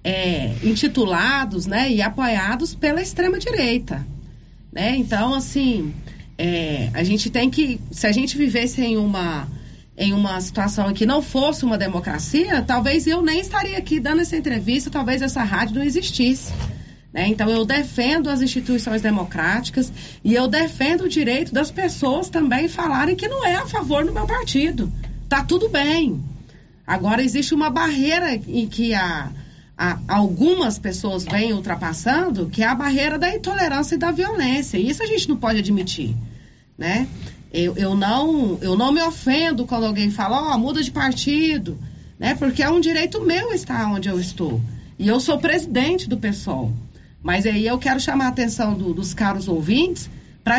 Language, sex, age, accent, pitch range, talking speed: Portuguese, female, 40-59, Brazilian, 195-300 Hz, 160 wpm